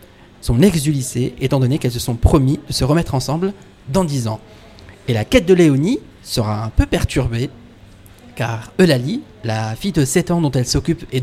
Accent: French